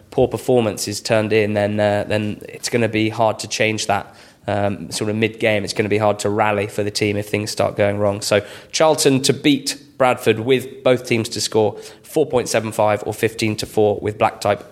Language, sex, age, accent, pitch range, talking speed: English, male, 20-39, British, 110-125 Hz, 240 wpm